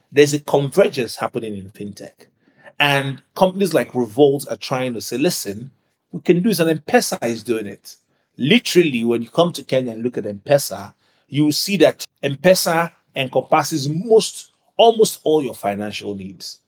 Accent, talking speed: Nigerian, 165 wpm